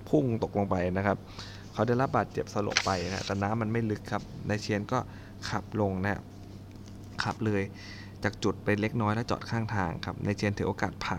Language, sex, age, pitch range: Thai, male, 20-39, 95-105 Hz